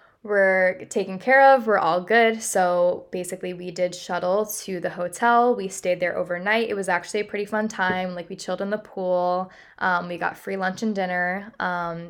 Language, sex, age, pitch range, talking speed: English, female, 10-29, 180-215 Hz, 200 wpm